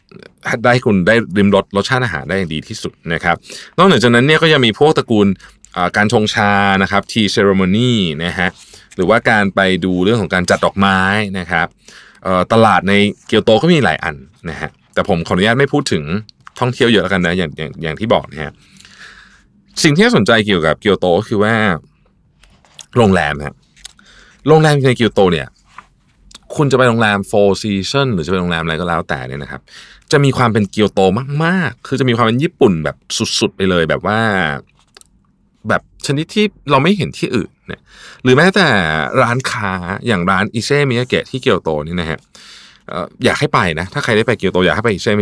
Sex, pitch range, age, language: male, 95-140 Hz, 20-39, Thai